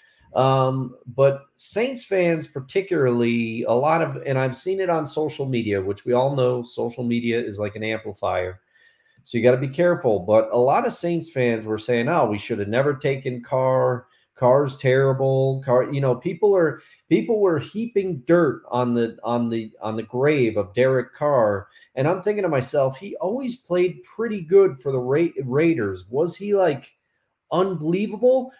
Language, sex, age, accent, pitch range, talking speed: English, male, 40-59, American, 120-180 Hz, 175 wpm